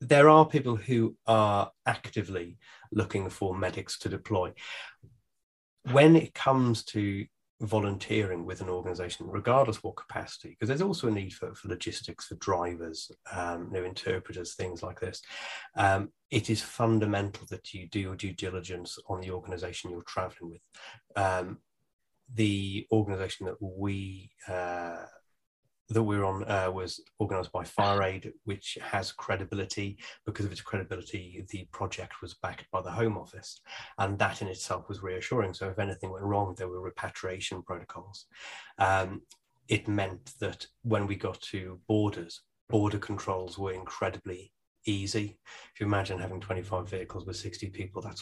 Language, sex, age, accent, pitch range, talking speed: English, male, 30-49, British, 95-110 Hz, 155 wpm